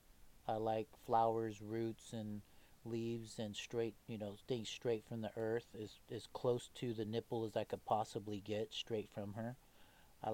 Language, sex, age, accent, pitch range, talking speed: English, male, 40-59, American, 105-120 Hz, 170 wpm